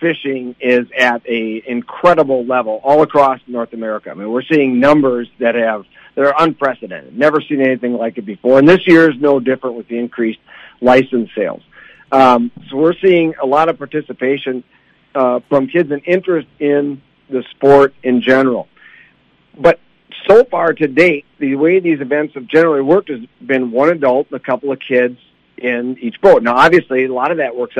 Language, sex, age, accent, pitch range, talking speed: English, male, 50-69, American, 125-150 Hz, 185 wpm